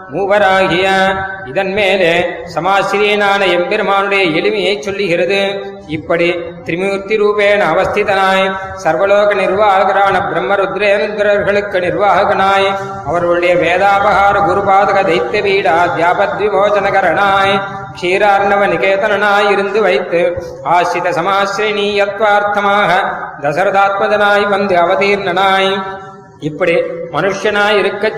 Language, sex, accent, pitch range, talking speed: Tamil, male, native, 190-205 Hz, 70 wpm